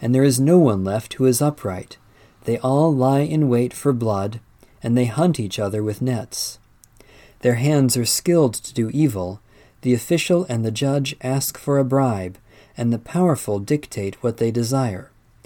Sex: male